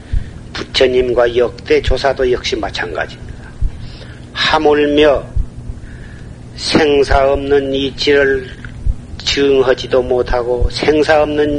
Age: 40-59